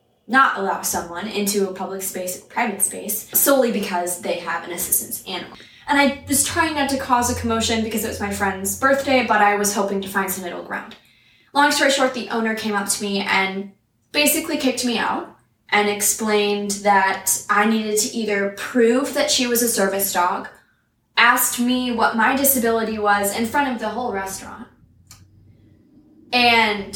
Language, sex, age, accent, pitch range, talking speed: English, female, 10-29, American, 195-235 Hz, 180 wpm